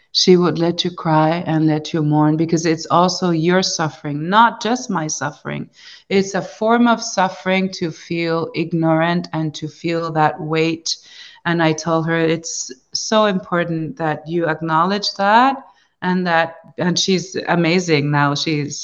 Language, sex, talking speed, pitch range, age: English, female, 155 wpm, 165-200 Hz, 30-49